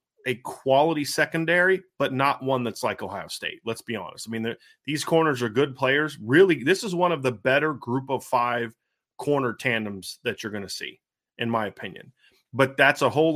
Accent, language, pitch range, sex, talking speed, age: American, English, 115-145 Hz, male, 200 wpm, 30-49